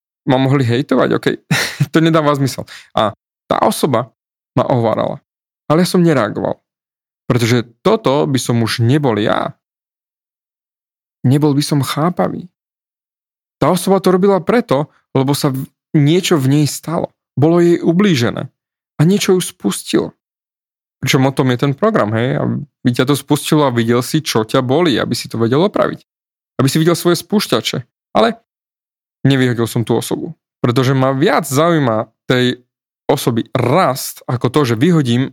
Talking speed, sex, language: 150 wpm, male, Slovak